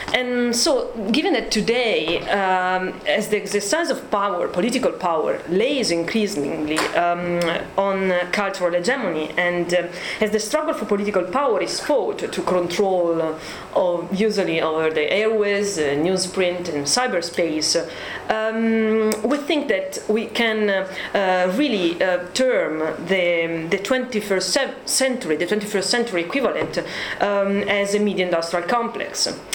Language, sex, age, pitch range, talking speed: English, female, 30-49, 175-225 Hz, 140 wpm